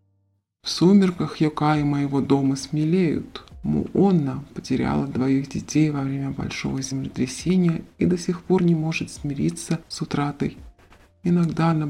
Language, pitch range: Russian, 135-160 Hz